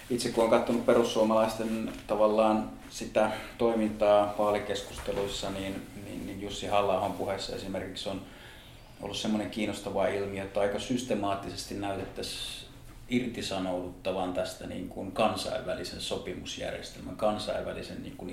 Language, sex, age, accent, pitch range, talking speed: Finnish, male, 30-49, native, 95-110 Hz, 110 wpm